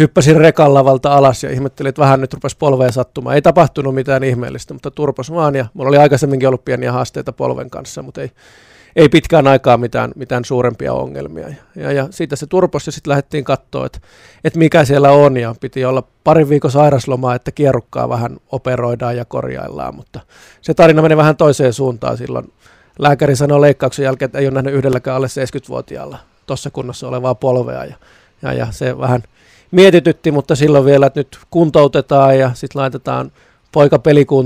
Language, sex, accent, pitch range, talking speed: Finnish, male, native, 125-145 Hz, 175 wpm